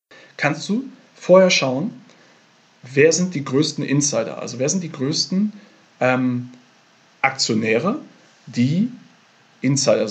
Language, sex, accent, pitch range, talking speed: German, male, German, 125-160 Hz, 105 wpm